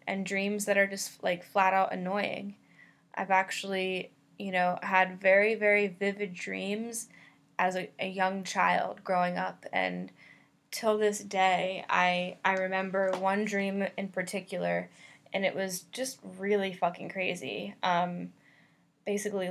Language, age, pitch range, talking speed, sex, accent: English, 10-29, 180-210 Hz, 135 wpm, female, American